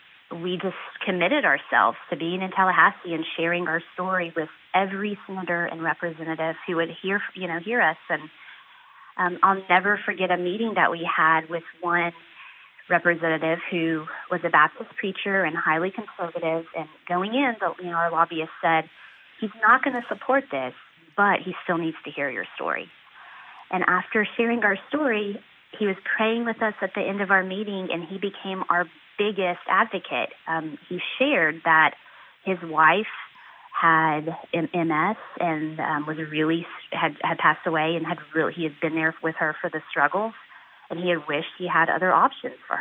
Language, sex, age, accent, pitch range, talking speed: English, female, 30-49, American, 165-200 Hz, 180 wpm